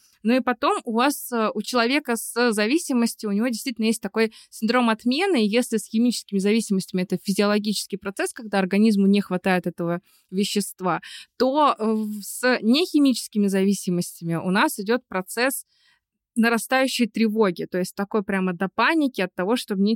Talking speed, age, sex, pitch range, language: 150 wpm, 20-39, female, 190-235 Hz, Russian